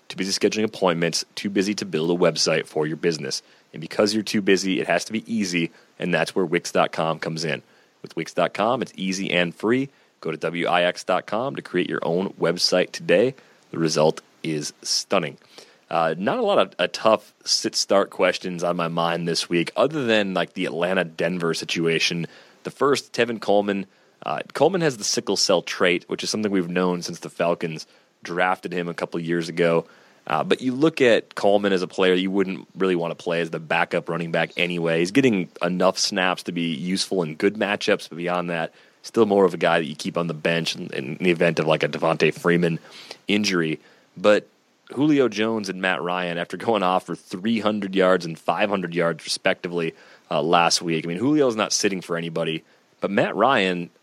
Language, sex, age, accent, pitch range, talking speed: English, male, 30-49, American, 85-100 Hz, 195 wpm